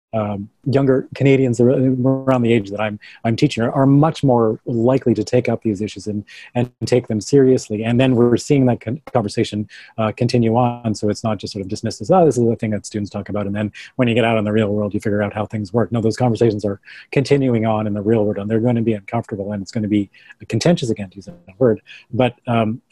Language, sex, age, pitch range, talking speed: English, male, 30-49, 110-130 Hz, 255 wpm